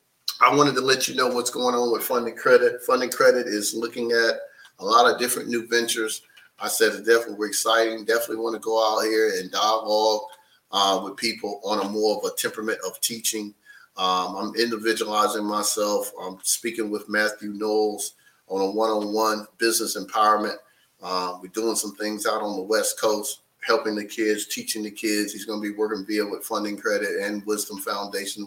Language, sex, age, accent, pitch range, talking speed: English, male, 30-49, American, 105-115 Hz, 185 wpm